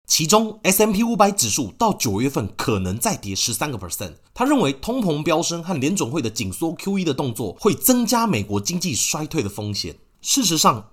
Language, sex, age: Chinese, male, 30-49